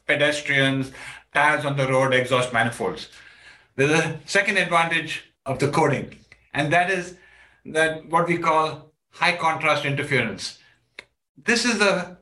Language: English